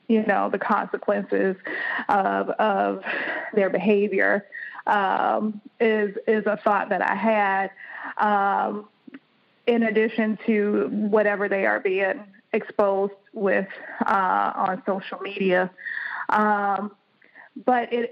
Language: English